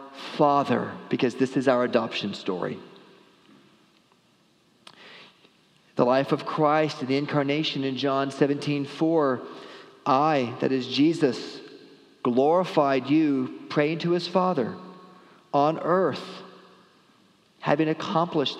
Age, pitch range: 40-59, 140-175 Hz